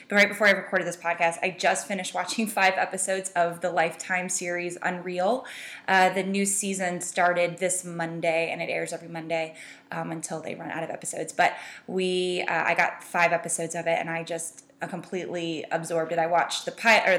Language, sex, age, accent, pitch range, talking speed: English, female, 10-29, American, 165-190 Hz, 190 wpm